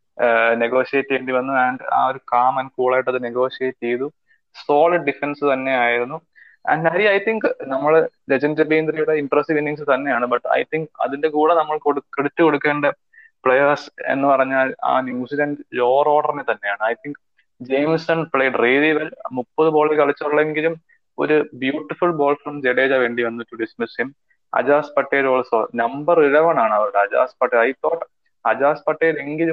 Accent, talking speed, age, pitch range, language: Indian, 105 wpm, 20-39, 130-155 Hz, English